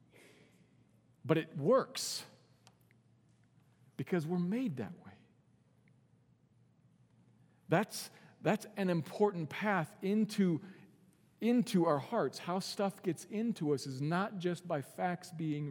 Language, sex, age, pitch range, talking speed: English, male, 50-69, 135-175 Hz, 105 wpm